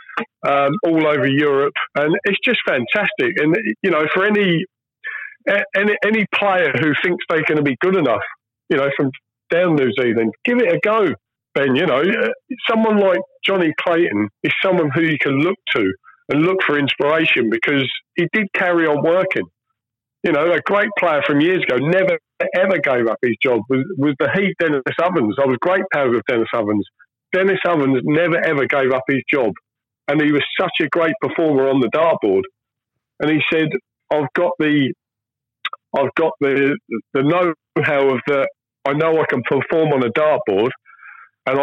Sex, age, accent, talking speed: male, 40-59, British, 180 wpm